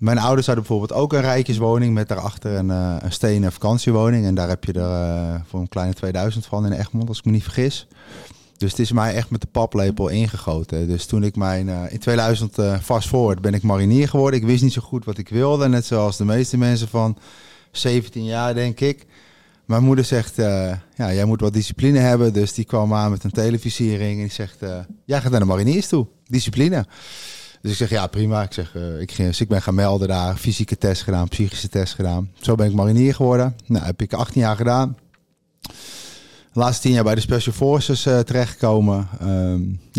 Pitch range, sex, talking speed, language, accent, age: 100-125 Hz, male, 215 wpm, Dutch, Dutch, 30-49